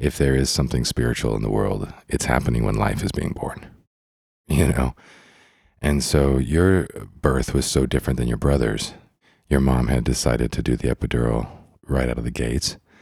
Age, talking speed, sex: 40-59, 185 wpm, male